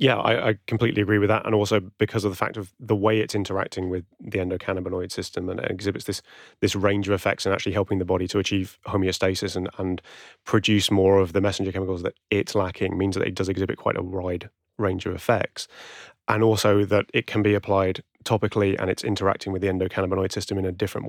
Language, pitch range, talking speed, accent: English, 95-105 Hz, 225 wpm, British